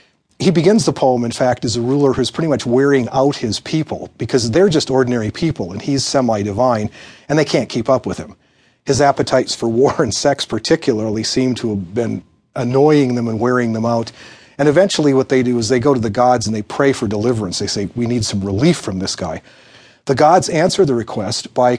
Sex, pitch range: male, 110-140 Hz